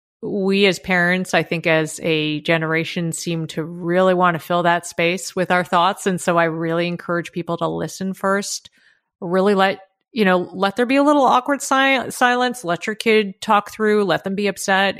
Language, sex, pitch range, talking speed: English, female, 175-225 Hz, 195 wpm